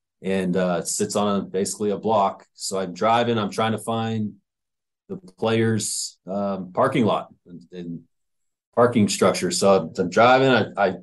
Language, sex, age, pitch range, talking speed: English, male, 30-49, 100-125 Hz, 160 wpm